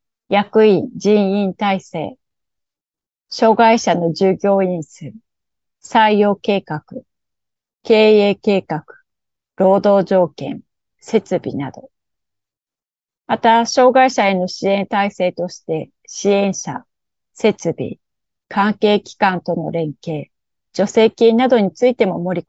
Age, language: 30-49, Japanese